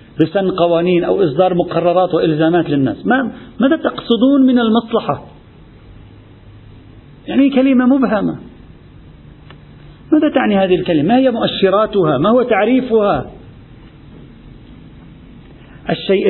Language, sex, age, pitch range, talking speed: Arabic, male, 50-69, 165-225 Hz, 90 wpm